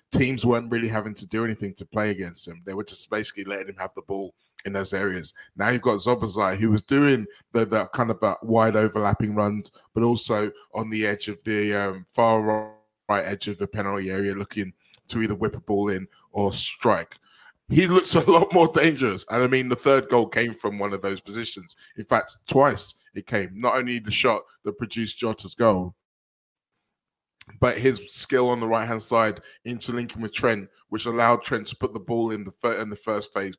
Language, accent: English, British